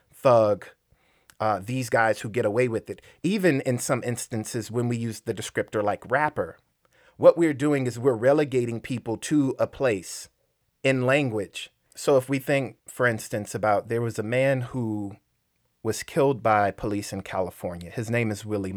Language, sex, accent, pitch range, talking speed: English, male, American, 100-130 Hz, 175 wpm